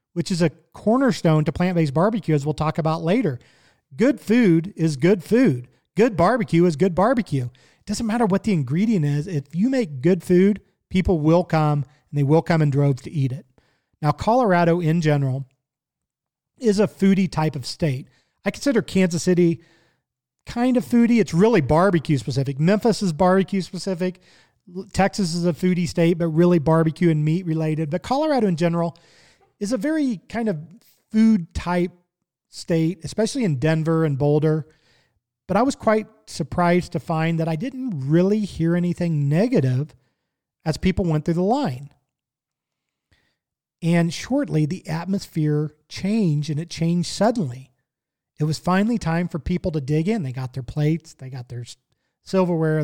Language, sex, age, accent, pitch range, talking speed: English, male, 40-59, American, 150-190 Hz, 160 wpm